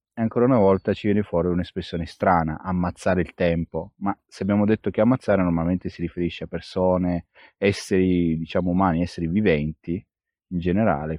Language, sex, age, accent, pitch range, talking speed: Italian, male, 30-49, native, 90-110 Hz, 160 wpm